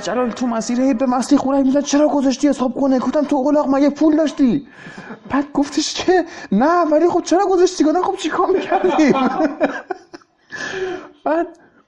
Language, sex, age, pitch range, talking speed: Persian, male, 20-39, 215-305 Hz, 135 wpm